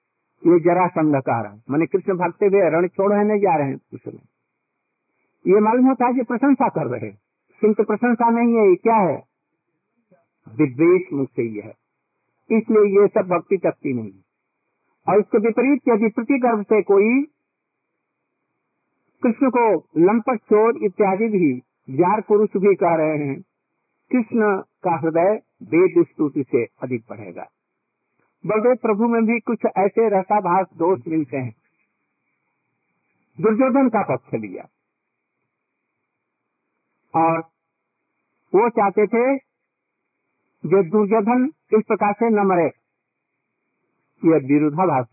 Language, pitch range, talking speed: Hindi, 170-230 Hz, 120 wpm